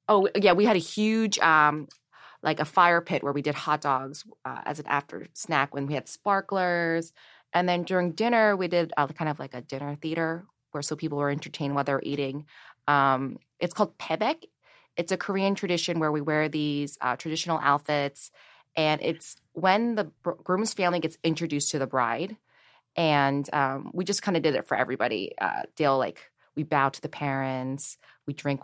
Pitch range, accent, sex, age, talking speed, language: 145-180 Hz, American, female, 20-39, 195 wpm, English